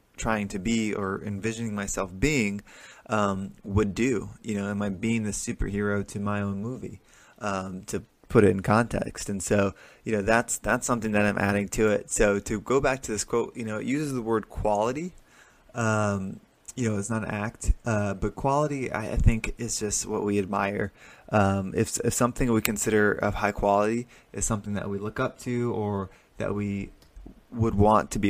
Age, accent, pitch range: 20-39, American, 100-115 Hz